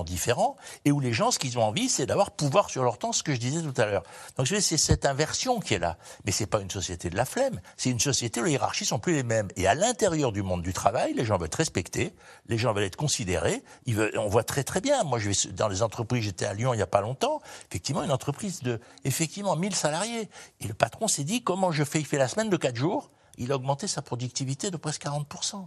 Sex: male